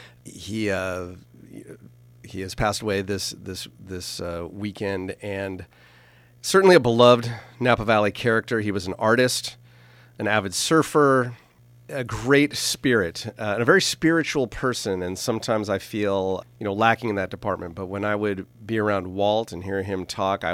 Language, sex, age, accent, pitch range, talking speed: English, male, 40-59, American, 95-120 Hz, 165 wpm